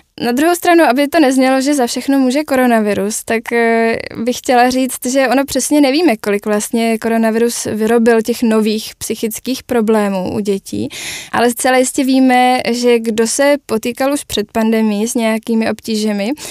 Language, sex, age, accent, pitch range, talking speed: Czech, female, 10-29, native, 220-245 Hz, 155 wpm